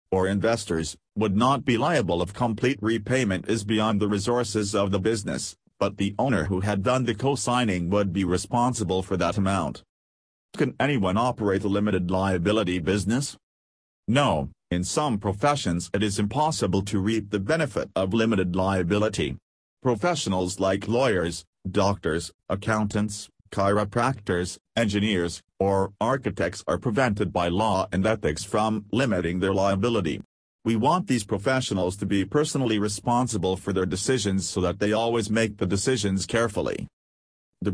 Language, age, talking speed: English, 40-59, 145 wpm